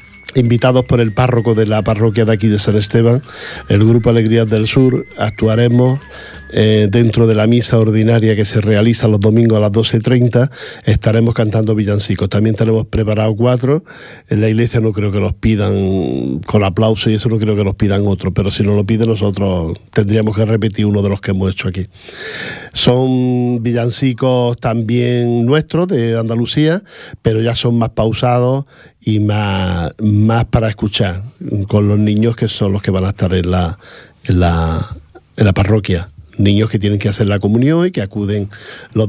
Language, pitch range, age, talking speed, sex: Portuguese, 105-120 Hz, 50-69, 180 wpm, male